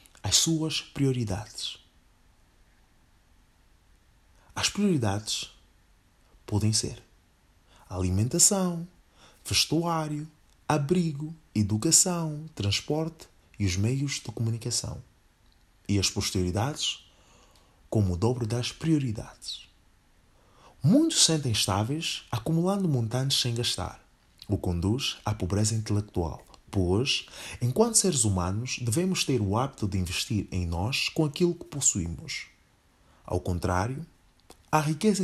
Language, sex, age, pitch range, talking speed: Portuguese, male, 30-49, 95-145 Hz, 100 wpm